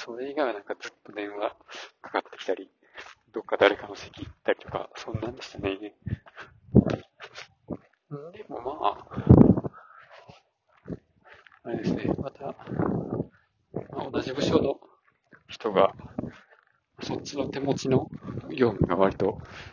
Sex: male